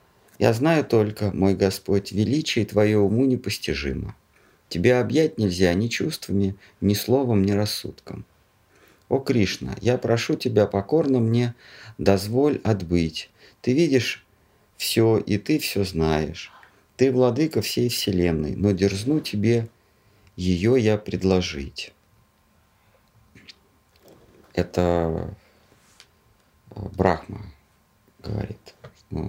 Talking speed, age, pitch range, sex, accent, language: 95 wpm, 50-69, 90-110 Hz, male, native, Russian